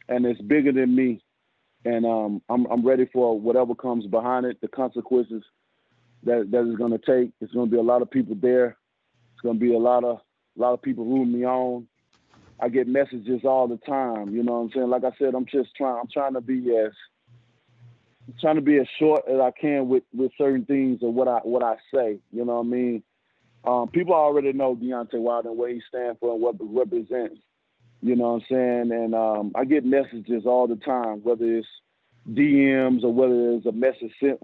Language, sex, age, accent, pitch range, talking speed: English, male, 30-49, American, 120-130 Hz, 220 wpm